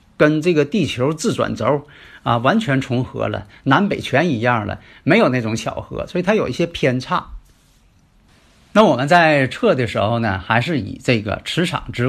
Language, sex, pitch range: Chinese, male, 115-170 Hz